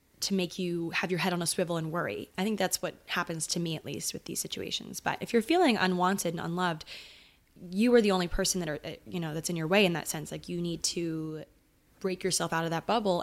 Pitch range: 170-210 Hz